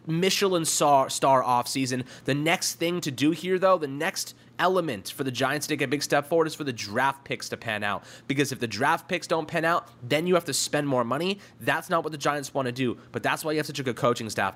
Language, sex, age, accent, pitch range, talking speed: English, male, 20-39, American, 115-145 Hz, 260 wpm